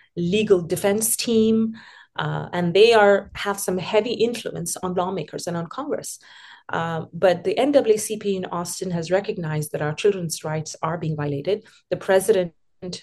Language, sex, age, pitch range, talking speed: English, female, 30-49, 165-205 Hz, 150 wpm